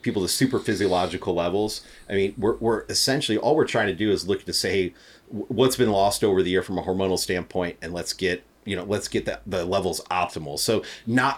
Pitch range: 90-110 Hz